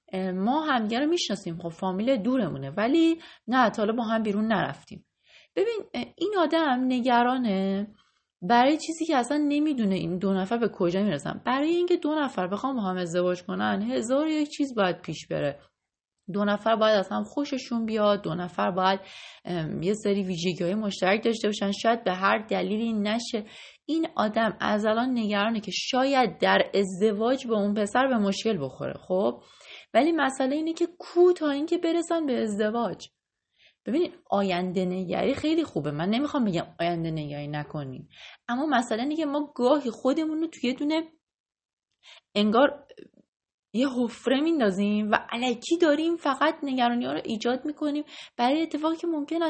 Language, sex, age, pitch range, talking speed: Persian, female, 30-49, 200-295 Hz, 155 wpm